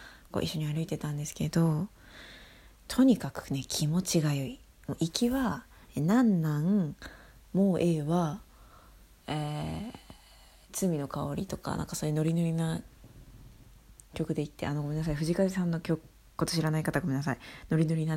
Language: Japanese